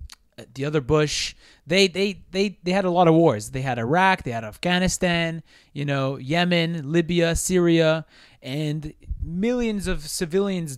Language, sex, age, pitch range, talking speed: English, male, 20-39, 135-165 Hz, 150 wpm